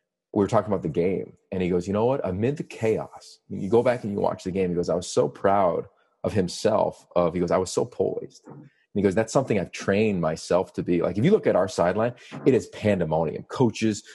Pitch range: 90-125 Hz